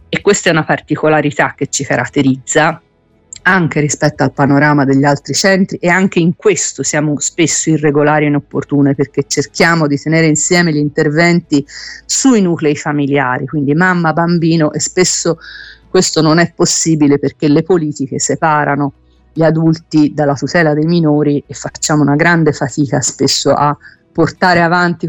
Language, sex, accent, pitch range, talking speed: Italian, female, native, 145-170 Hz, 150 wpm